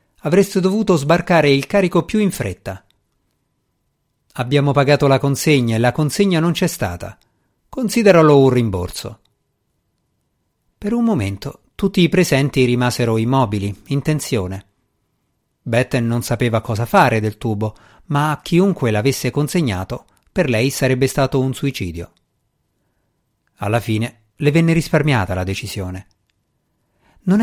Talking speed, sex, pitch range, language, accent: 125 wpm, male, 115-170 Hz, Italian, native